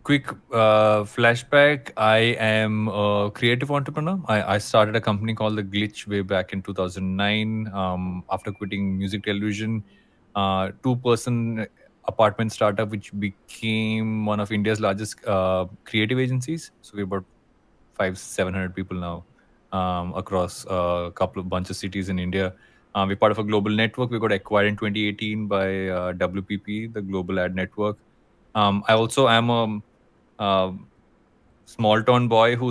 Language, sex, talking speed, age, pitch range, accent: English, male, 155 wpm, 20-39, 95-115 Hz, Indian